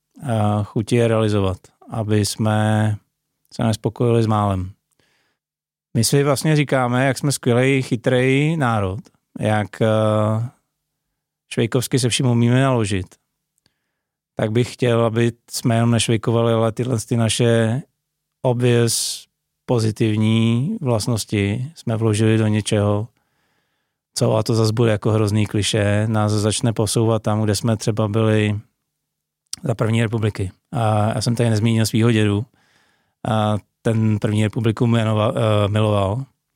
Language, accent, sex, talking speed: Czech, native, male, 120 wpm